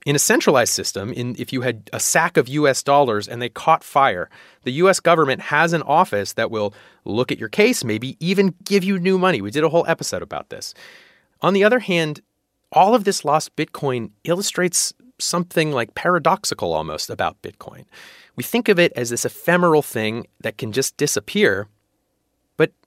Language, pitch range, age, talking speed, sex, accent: English, 120-180 Hz, 30-49, 185 wpm, male, American